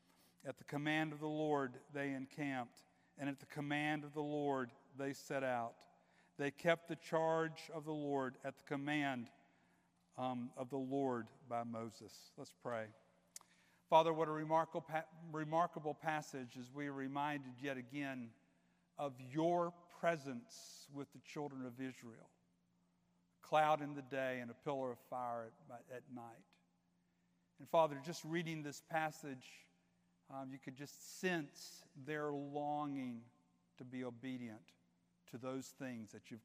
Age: 50-69